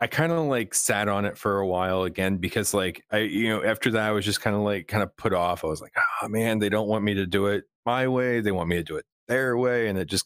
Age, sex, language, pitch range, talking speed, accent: 30-49, male, English, 95-110 Hz, 310 wpm, American